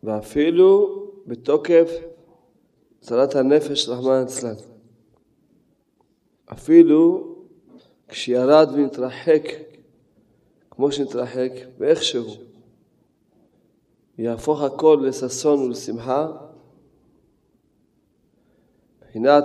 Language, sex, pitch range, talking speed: Hebrew, male, 120-150 Hz, 50 wpm